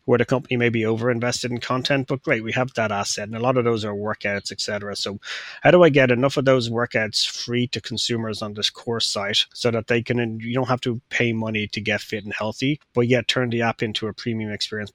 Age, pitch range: 30-49, 105-125 Hz